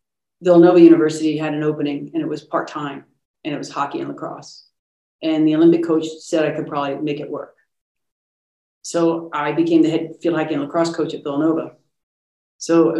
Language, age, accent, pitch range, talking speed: English, 40-59, American, 155-180 Hz, 185 wpm